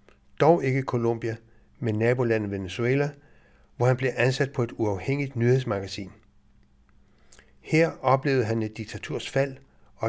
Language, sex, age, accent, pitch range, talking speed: Danish, male, 60-79, native, 115-140 Hz, 130 wpm